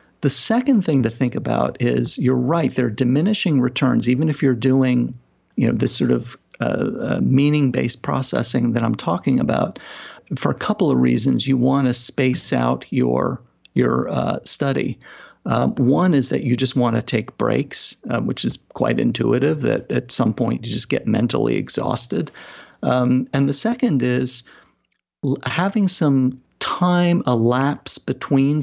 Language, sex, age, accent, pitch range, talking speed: English, male, 50-69, American, 120-145 Hz, 160 wpm